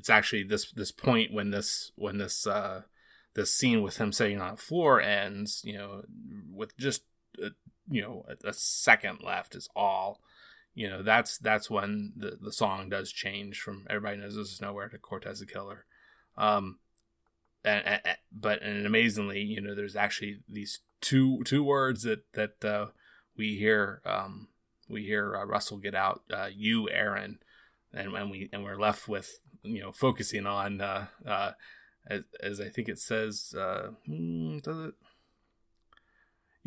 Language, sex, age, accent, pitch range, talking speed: English, male, 20-39, American, 100-130 Hz, 165 wpm